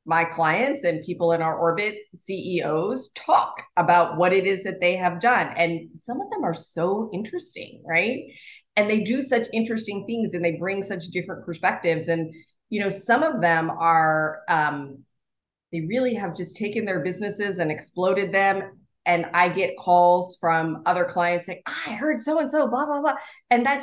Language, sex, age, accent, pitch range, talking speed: English, female, 30-49, American, 160-200 Hz, 185 wpm